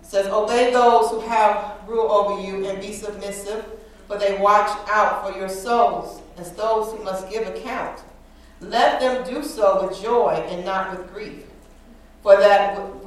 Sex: female